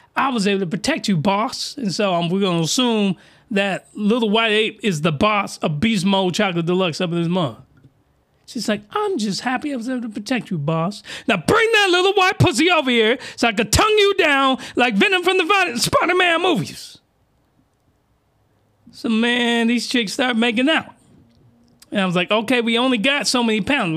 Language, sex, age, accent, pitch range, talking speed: English, male, 30-49, American, 180-250 Hz, 200 wpm